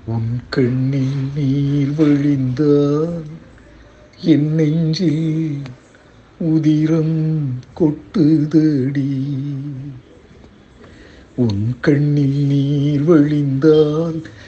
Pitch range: 145-190 Hz